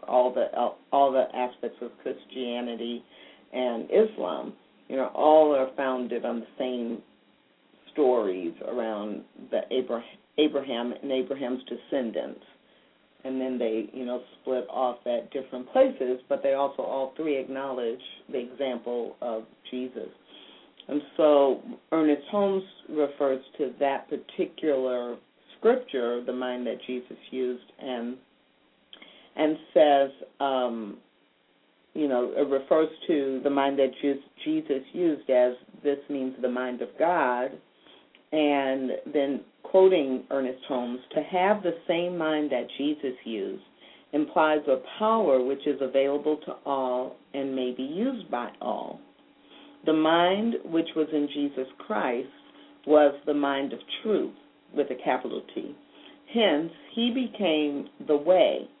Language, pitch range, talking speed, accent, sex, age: English, 125-155 Hz, 130 wpm, American, female, 50-69